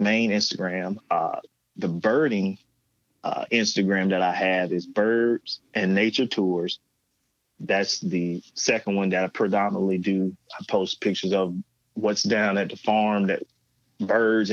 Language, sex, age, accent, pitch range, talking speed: English, male, 30-49, American, 95-120 Hz, 140 wpm